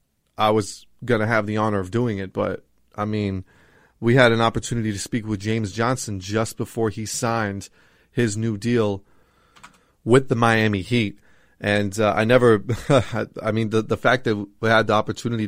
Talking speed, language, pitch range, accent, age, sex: 180 wpm, English, 105-115 Hz, American, 20-39, male